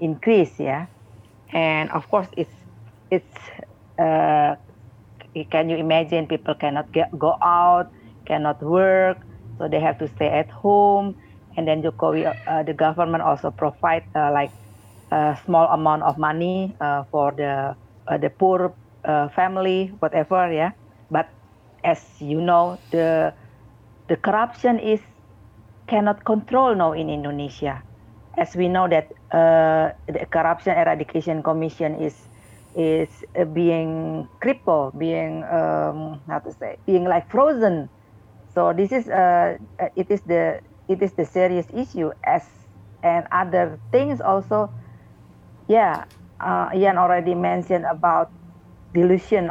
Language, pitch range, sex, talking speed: English, 115-180 Hz, female, 130 wpm